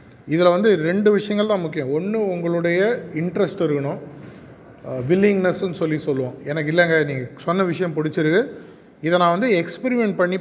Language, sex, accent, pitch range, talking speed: Tamil, male, native, 145-190 Hz, 140 wpm